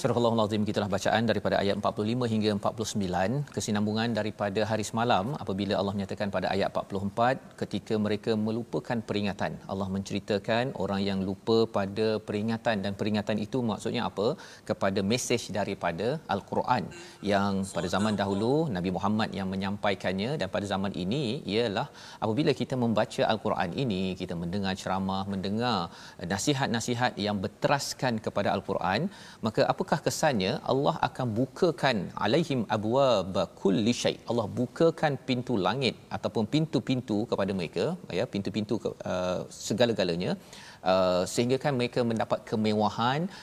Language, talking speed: Malayalam, 130 wpm